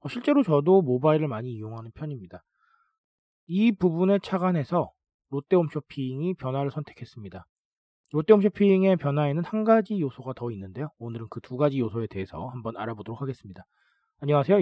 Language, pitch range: Korean, 125-185 Hz